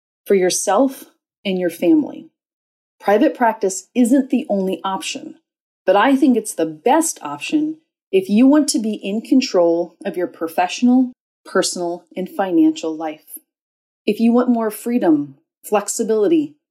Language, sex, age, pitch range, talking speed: English, female, 30-49, 185-280 Hz, 135 wpm